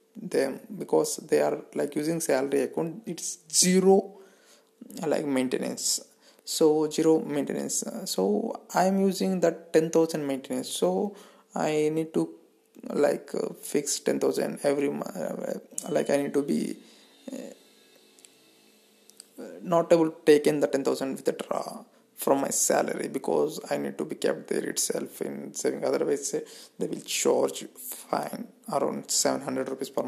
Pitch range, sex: 140-185 Hz, male